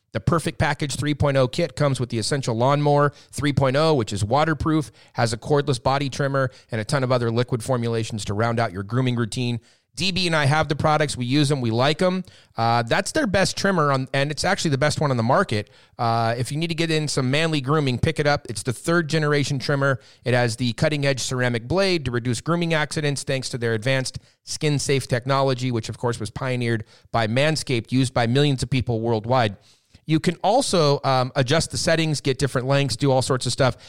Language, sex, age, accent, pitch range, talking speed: English, male, 30-49, American, 125-155 Hz, 220 wpm